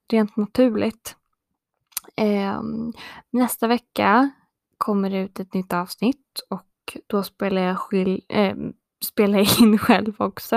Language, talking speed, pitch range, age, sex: Swedish, 125 wpm, 200-235 Hz, 20-39, female